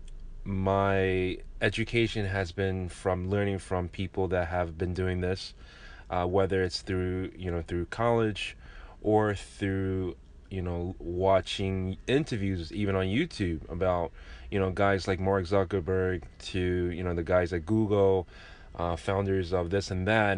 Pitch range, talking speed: 85-100 Hz, 145 wpm